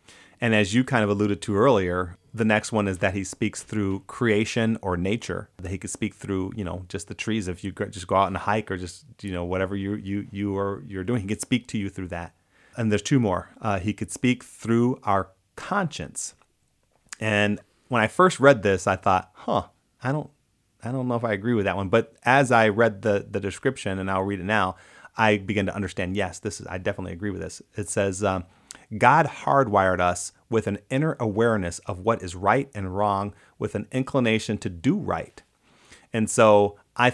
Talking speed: 215 wpm